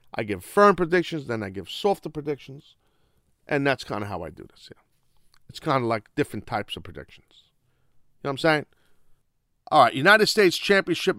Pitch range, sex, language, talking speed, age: 140-180 Hz, male, English, 195 wpm, 40-59